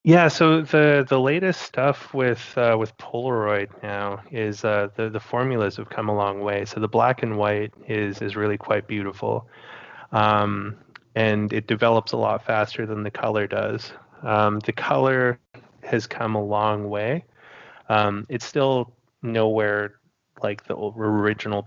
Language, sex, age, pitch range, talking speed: English, male, 20-39, 100-115 Hz, 160 wpm